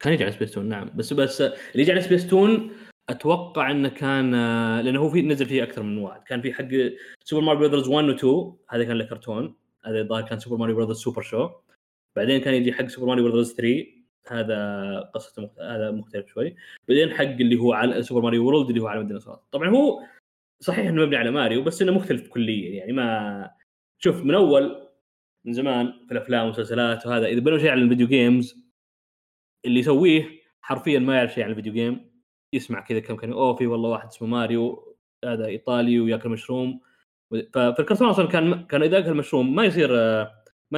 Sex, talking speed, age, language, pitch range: male, 185 wpm, 20-39, Arabic, 115-150 Hz